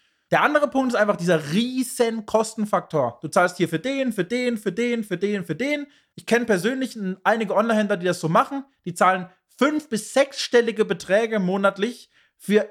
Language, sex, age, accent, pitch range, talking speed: German, male, 20-39, German, 190-245 Hz, 180 wpm